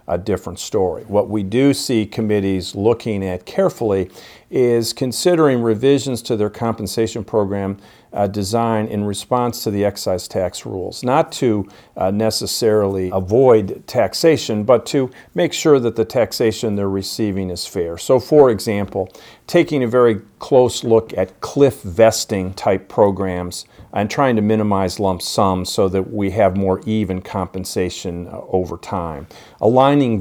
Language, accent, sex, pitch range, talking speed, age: English, American, male, 95-115 Hz, 145 wpm, 50-69